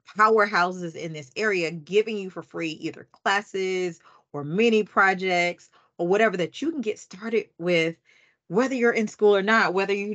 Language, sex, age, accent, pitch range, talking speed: English, female, 30-49, American, 145-185 Hz, 170 wpm